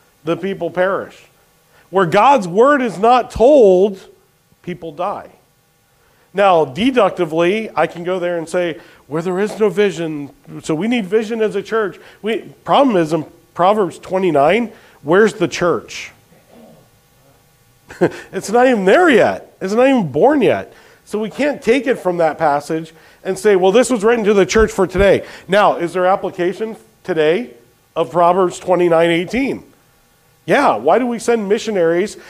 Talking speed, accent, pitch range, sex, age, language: 155 wpm, American, 165-220 Hz, male, 40-59, English